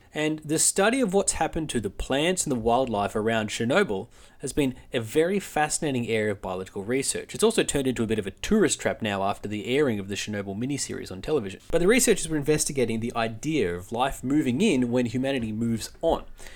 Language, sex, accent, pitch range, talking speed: English, male, Australian, 115-160 Hz, 210 wpm